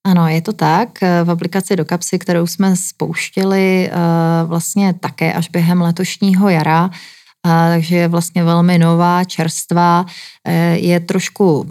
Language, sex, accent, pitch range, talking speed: Czech, female, native, 160-180 Hz, 130 wpm